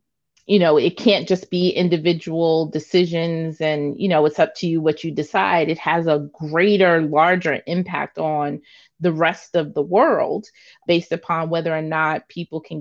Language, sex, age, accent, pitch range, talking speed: English, female, 30-49, American, 160-220 Hz, 175 wpm